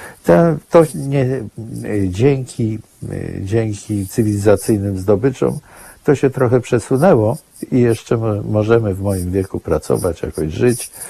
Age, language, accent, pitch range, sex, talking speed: 50-69, Polish, native, 85-120 Hz, male, 115 wpm